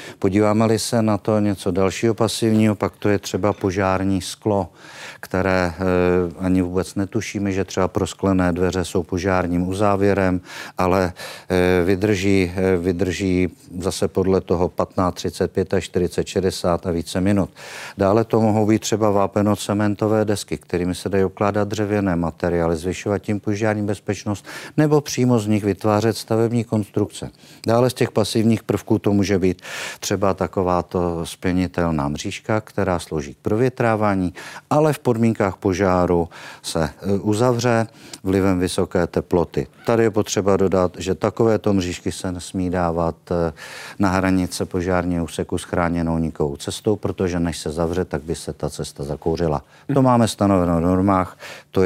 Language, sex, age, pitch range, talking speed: Czech, male, 50-69, 90-105 Hz, 140 wpm